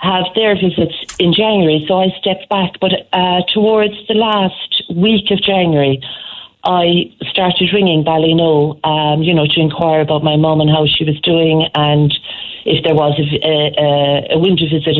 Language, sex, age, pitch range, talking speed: English, female, 40-59, 150-180 Hz, 165 wpm